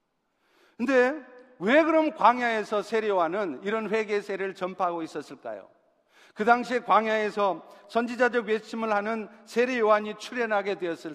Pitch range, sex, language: 205-255 Hz, male, Korean